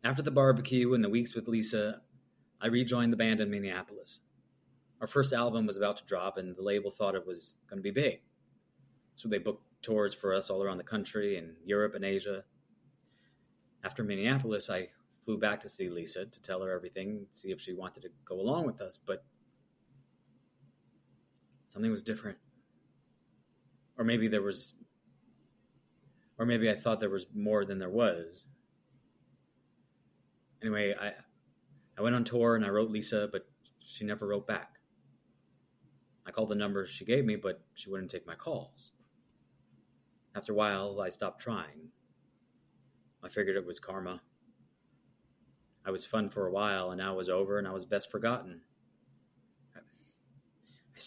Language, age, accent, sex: English, 30-49, American, male